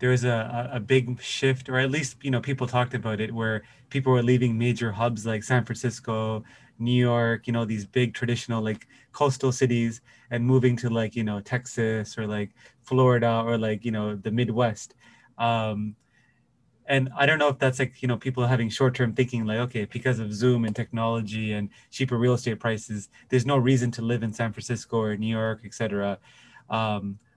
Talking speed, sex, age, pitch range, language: 195 wpm, male, 20-39, 115-130 Hz, English